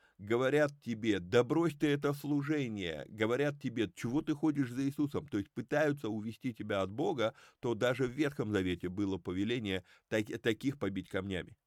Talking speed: 160 wpm